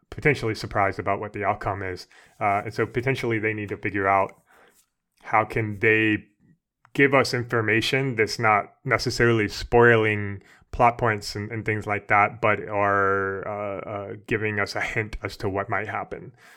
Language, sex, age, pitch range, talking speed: English, male, 20-39, 100-115 Hz, 165 wpm